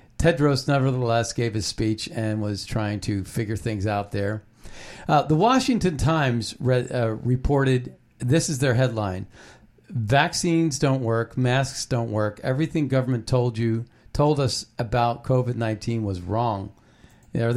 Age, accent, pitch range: 50-69, American, 115-140 Hz